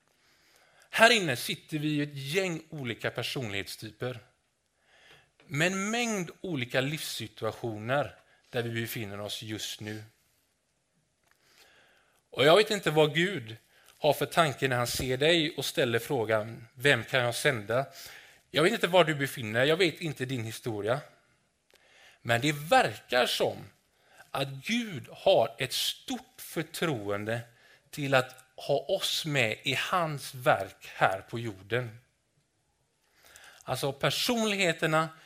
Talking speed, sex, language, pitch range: 130 wpm, male, Swedish, 120-175 Hz